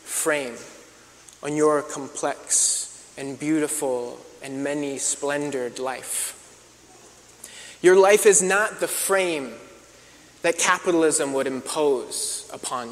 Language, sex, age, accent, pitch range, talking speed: English, male, 20-39, American, 140-175 Hz, 95 wpm